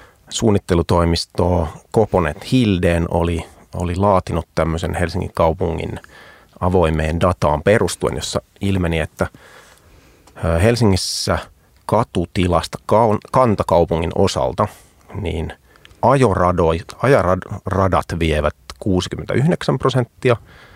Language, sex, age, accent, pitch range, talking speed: Finnish, male, 30-49, native, 85-105 Hz, 70 wpm